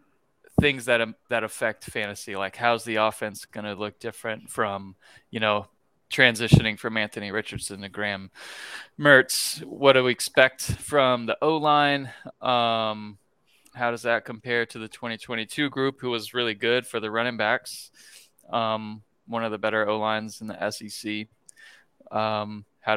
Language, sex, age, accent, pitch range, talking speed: English, male, 20-39, American, 110-130 Hz, 150 wpm